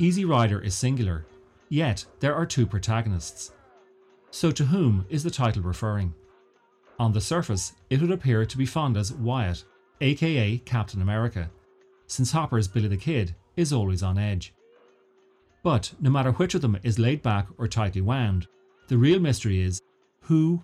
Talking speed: 160 wpm